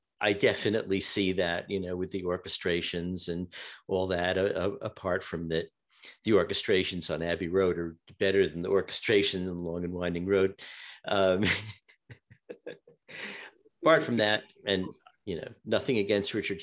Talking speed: 150 wpm